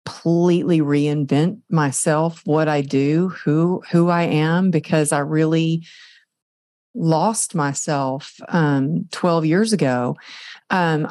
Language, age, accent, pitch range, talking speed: English, 40-59, American, 155-195 Hz, 110 wpm